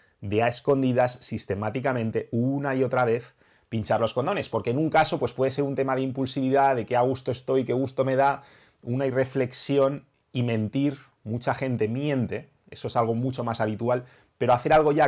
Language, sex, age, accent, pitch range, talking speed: English, male, 30-49, Spanish, 115-140 Hz, 190 wpm